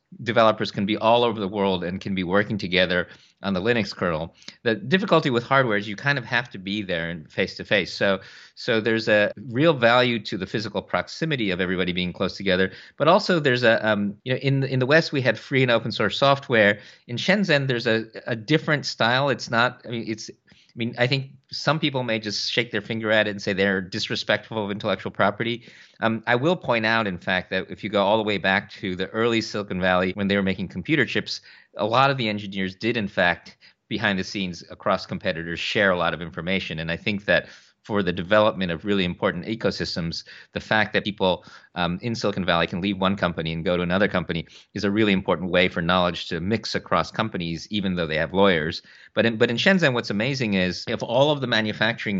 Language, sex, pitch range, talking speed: English, male, 95-120 Hz, 230 wpm